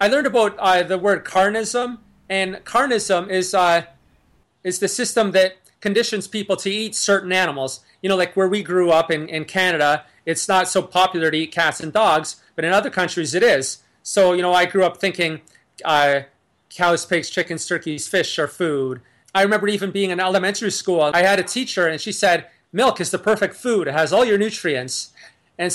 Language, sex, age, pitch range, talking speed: English, male, 30-49, 165-195 Hz, 200 wpm